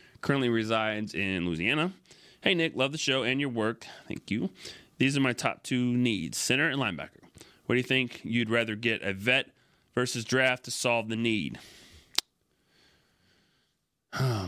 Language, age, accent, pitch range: English, 30-49, American, 110-140 Hz